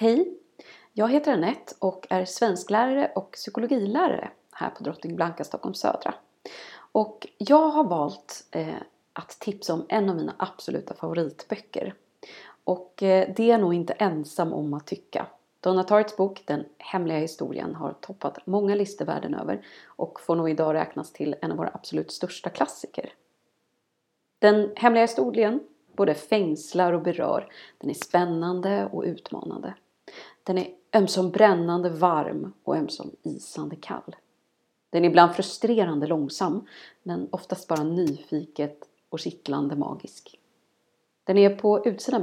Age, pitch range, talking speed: 30-49, 165-215 Hz, 135 wpm